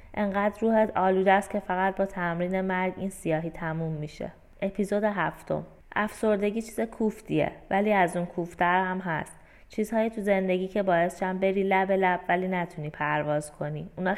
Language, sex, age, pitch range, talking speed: Persian, female, 20-39, 165-205 Hz, 155 wpm